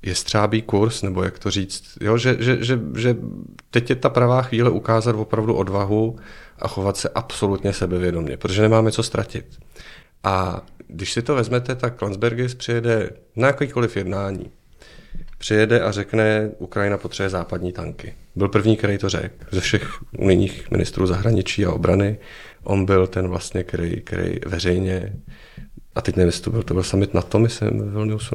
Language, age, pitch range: Czech, 40-59, 95-115 Hz